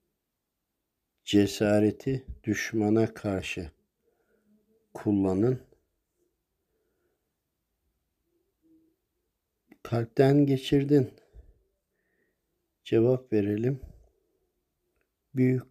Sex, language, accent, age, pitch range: male, Turkish, native, 50-69, 100-120 Hz